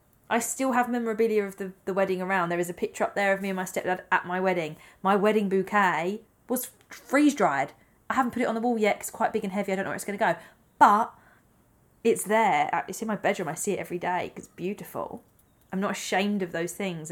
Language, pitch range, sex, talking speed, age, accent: English, 175-210 Hz, female, 250 wpm, 20-39, British